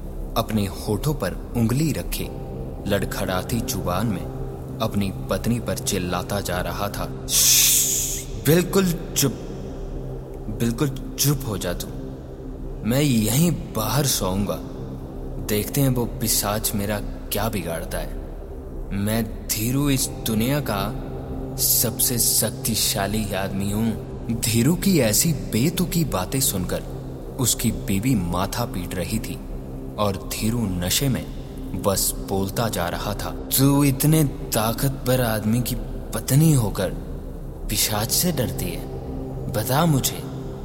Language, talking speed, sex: Hindi, 115 wpm, male